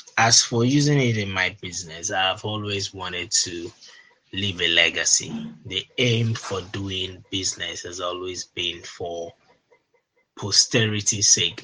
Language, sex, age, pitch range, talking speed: English, male, 20-39, 95-115 Hz, 130 wpm